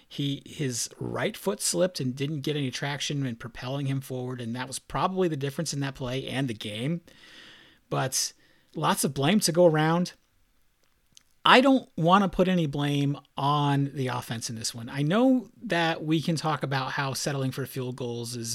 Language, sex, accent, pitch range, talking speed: English, male, American, 125-165 Hz, 190 wpm